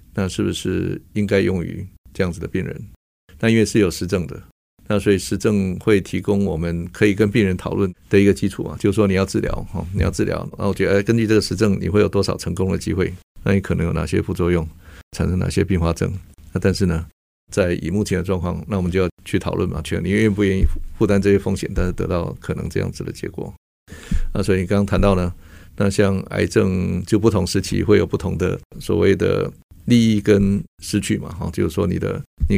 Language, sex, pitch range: Chinese, male, 90-105 Hz